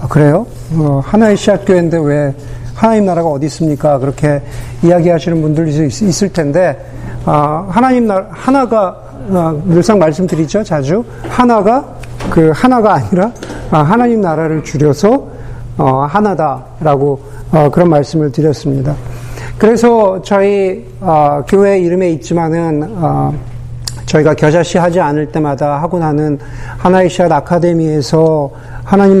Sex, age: male, 50-69